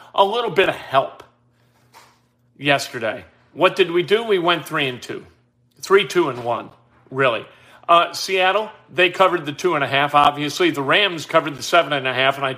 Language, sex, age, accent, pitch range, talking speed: English, male, 40-59, American, 140-175 Hz, 190 wpm